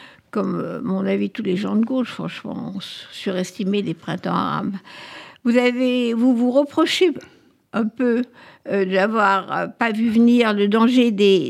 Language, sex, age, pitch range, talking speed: French, female, 60-79, 200-255 Hz, 140 wpm